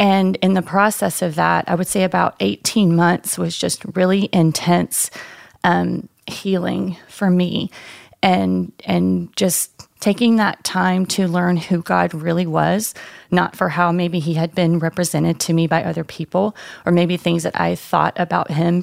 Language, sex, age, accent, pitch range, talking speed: English, female, 30-49, American, 170-190 Hz, 170 wpm